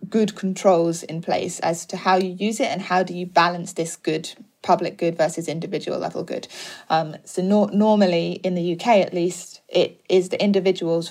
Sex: female